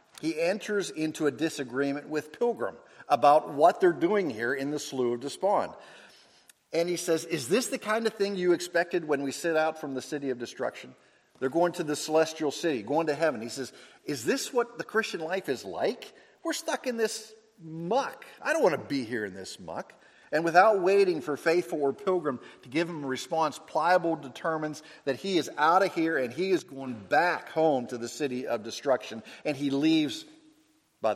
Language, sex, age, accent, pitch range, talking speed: English, male, 50-69, American, 130-175 Hz, 200 wpm